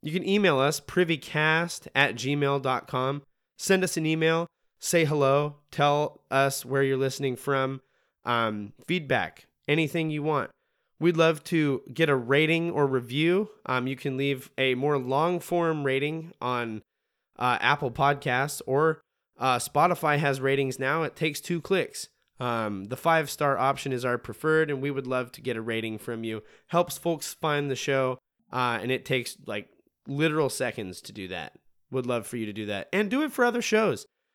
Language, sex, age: English, male, 20-39